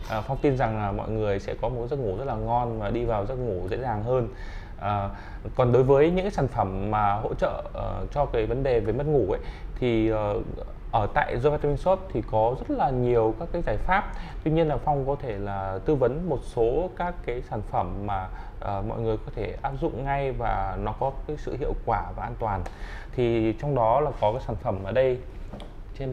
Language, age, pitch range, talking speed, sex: Vietnamese, 20-39, 100-135 Hz, 230 wpm, male